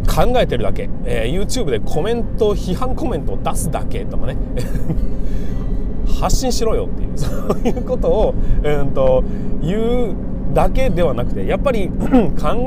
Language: Japanese